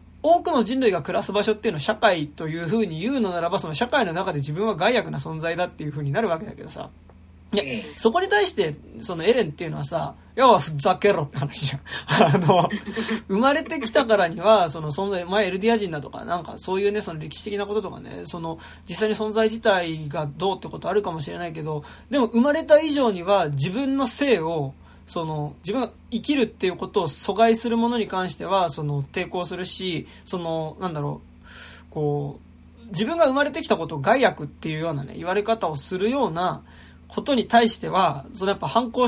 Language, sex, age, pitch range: Japanese, male, 20-39, 155-230 Hz